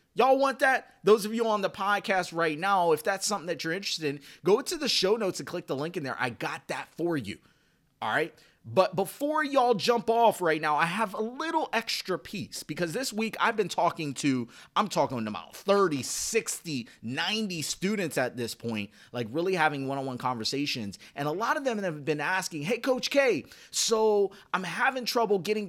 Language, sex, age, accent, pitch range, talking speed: English, male, 30-49, American, 150-210 Hz, 205 wpm